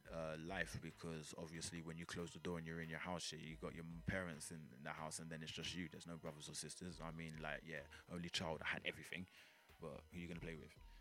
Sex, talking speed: male, 265 wpm